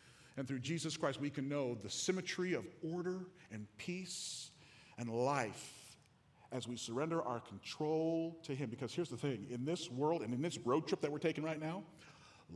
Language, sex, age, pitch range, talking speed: English, male, 40-59, 140-185 Hz, 190 wpm